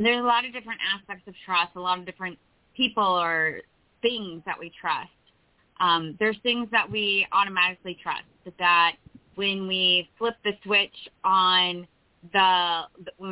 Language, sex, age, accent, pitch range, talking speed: English, female, 20-39, American, 175-215 Hz, 155 wpm